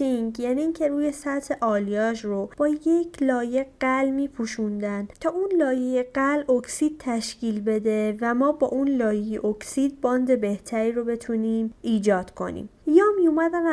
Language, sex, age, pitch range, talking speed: Persian, female, 30-49, 215-285 Hz, 140 wpm